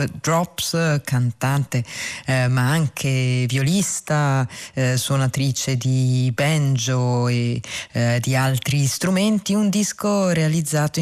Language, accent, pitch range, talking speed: Italian, native, 130-160 Hz, 100 wpm